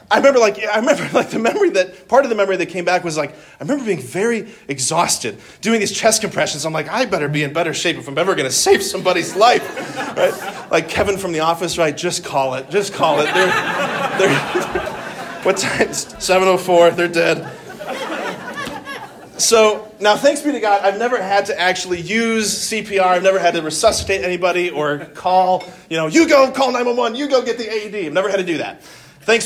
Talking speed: 205 wpm